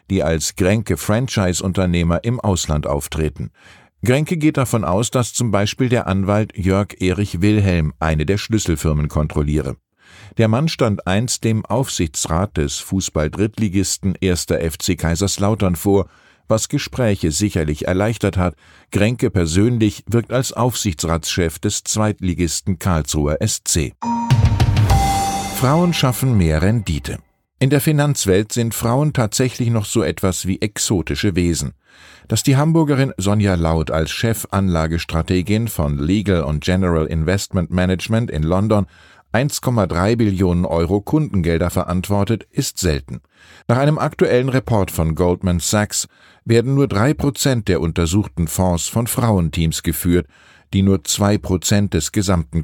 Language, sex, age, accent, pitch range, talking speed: German, male, 50-69, German, 85-115 Hz, 120 wpm